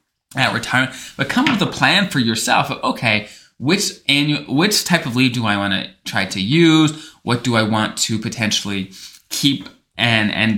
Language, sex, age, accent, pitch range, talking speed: English, male, 20-39, American, 110-140 Hz, 195 wpm